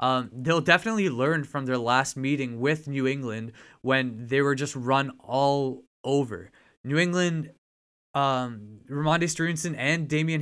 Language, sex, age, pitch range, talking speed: English, male, 20-39, 130-150 Hz, 145 wpm